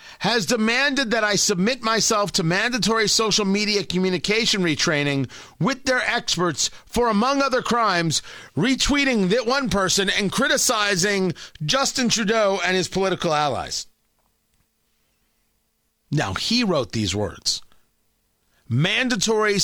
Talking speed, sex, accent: 115 wpm, male, American